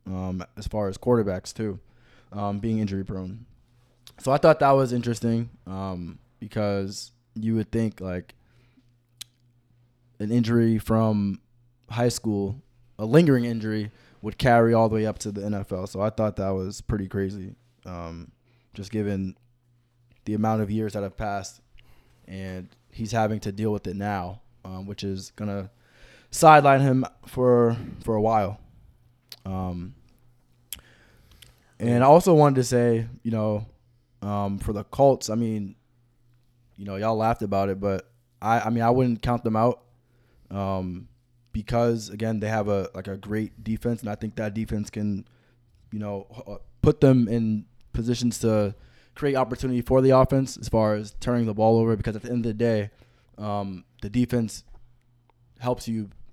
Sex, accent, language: male, American, English